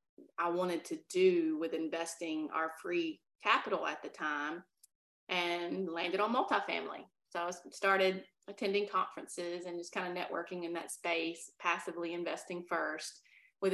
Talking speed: 145 wpm